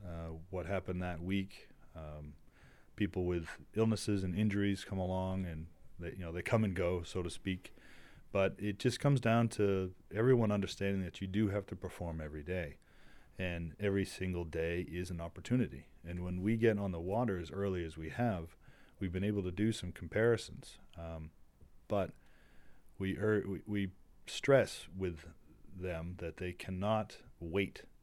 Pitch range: 85-100 Hz